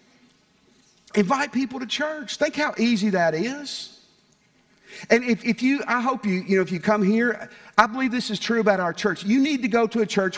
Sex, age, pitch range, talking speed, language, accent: male, 50-69, 155-220 Hz, 215 wpm, English, American